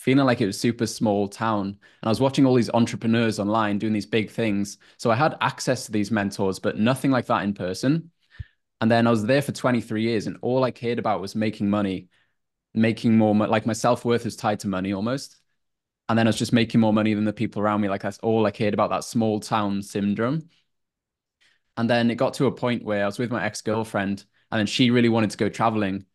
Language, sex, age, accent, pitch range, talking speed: English, male, 20-39, British, 100-115 Hz, 235 wpm